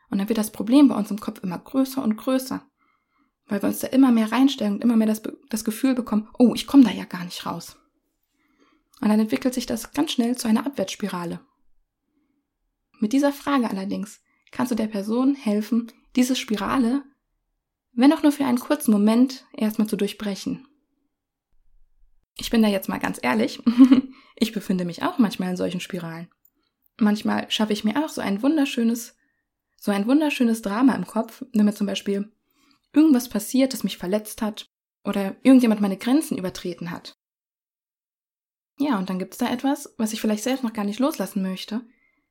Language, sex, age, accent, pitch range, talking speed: German, female, 20-39, German, 205-270 Hz, 180 wpm